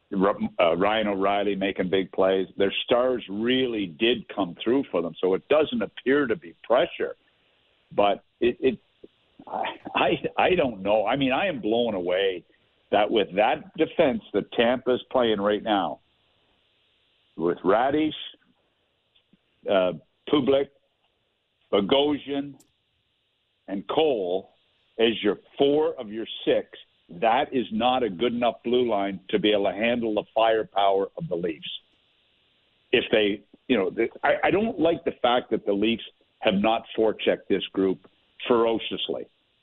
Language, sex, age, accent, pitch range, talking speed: English, male, 60-79, American, 100-130 Hz, 140 wpm